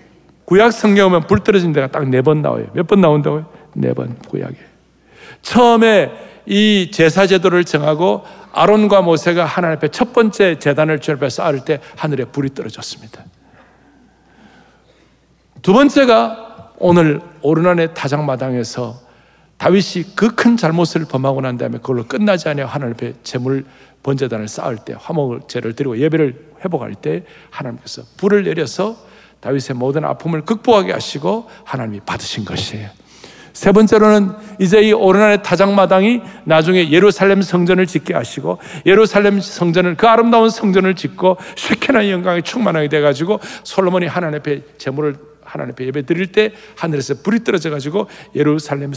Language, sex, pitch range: Korean, male, 145-205 Hz